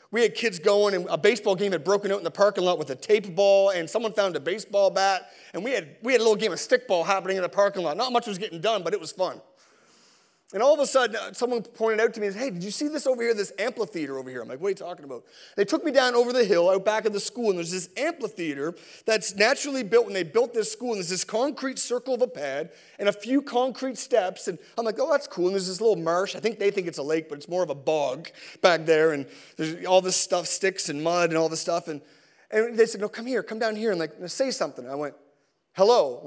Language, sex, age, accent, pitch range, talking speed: English, male, 30-49, American, 185-250 Hz, 280 wpm